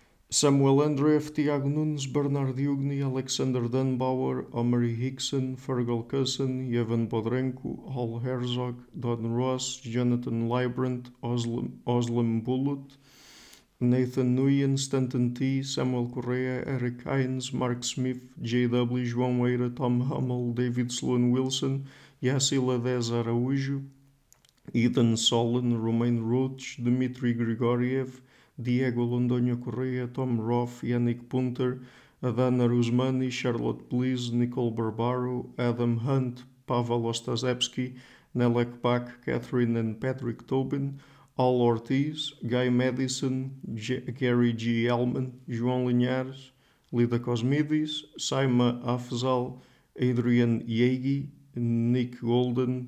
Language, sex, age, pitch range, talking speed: English, male, 50-69, 120-130 Hz, 100 wpm